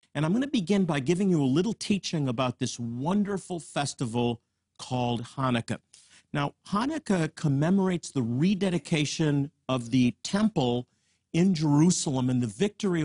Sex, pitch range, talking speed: male, 130-175 Hz, 135 wpm